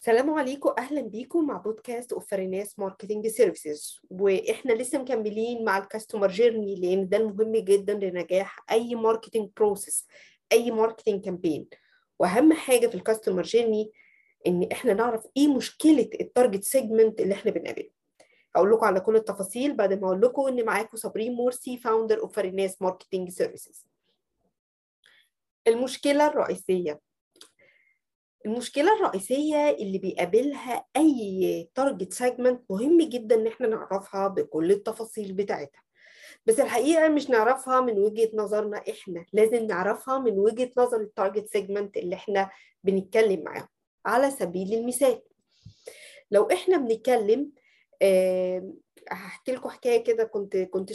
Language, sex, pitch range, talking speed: Arabic, female, 200-265 Hz, 125 wpm